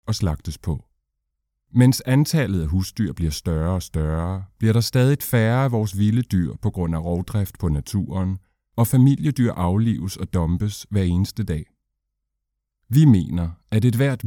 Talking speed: 160 wpm